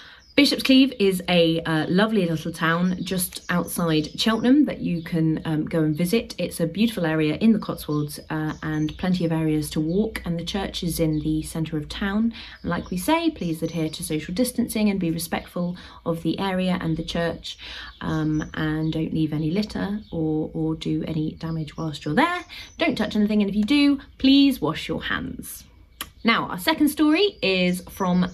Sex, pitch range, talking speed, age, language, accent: female, 155-225 Hz, 190 wpm, 30-49, English, British